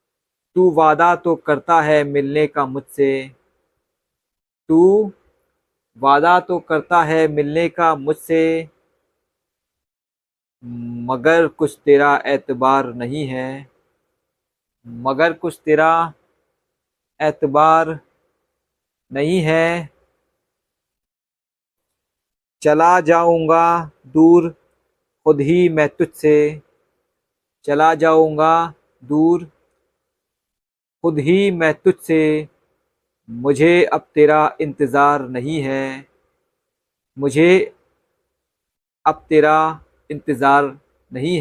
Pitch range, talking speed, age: 140-170 Hz, 75 wpm, 50-69